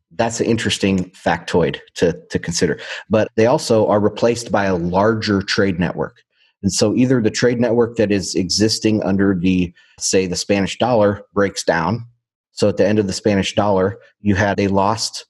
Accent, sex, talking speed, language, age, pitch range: American, male, 180 wpm, English, 30-49, 95-115 Hz